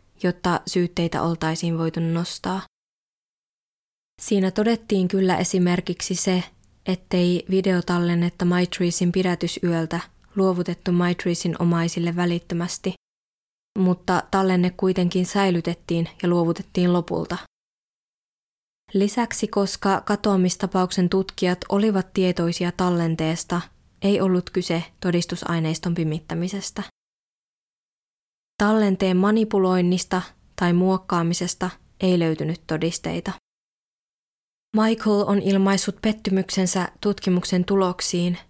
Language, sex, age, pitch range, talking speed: Finnish, female, 20-39, 175-190 Hz, 80 wpm